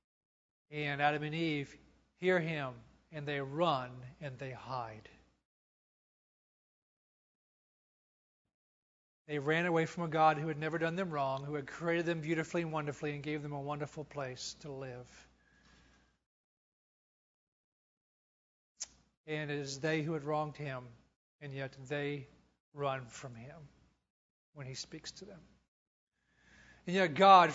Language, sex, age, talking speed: English, male, 40-59, 135 wpm